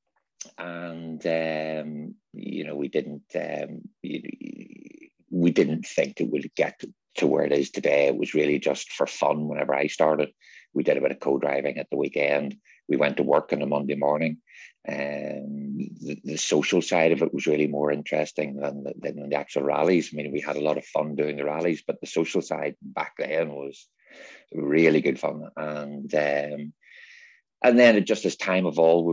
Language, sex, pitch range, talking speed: English, male, 75-85 Hz, 185 wpm